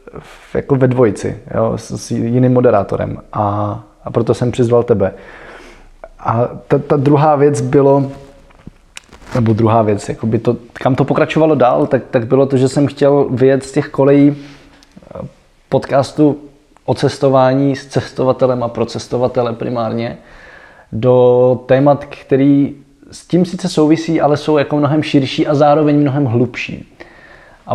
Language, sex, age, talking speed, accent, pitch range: Czech, male, 20-39, 140 wpm, native, 125-155 Hz